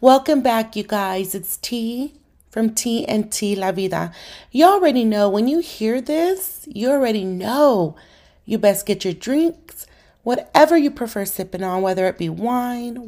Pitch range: 180-240 Hz